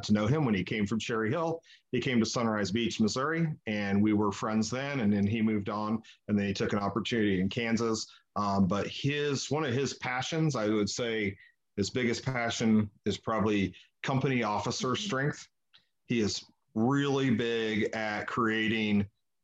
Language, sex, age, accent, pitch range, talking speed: English, male, 40-59, American, 105-125 Hz, 175 wpm